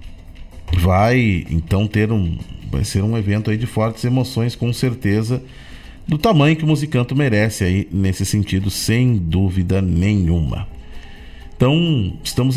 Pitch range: 100-145 Hz